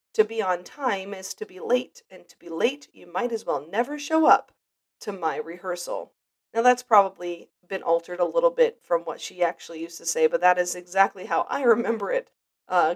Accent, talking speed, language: American, 215 wpm, English